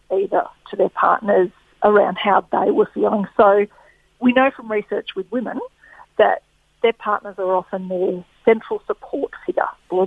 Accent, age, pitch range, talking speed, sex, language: Australian, 50-69, 195-230 Hz, 155 wpm, female, English